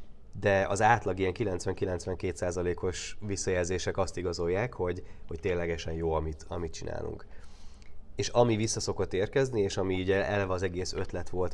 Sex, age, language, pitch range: male, 20-39, Hungarian, 90-105 Hz